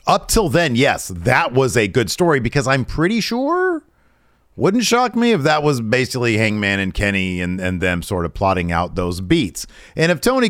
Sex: male